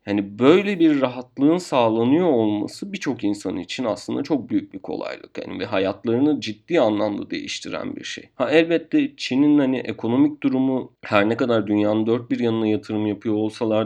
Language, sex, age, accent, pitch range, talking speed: Turkish, male, 40-59, native, 110-140 Hz, 165 wpm